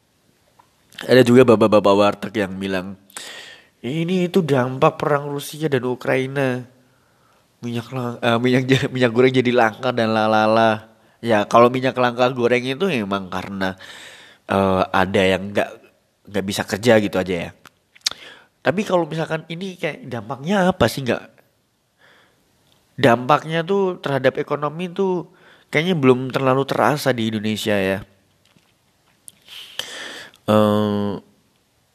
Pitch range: 100-130 Hz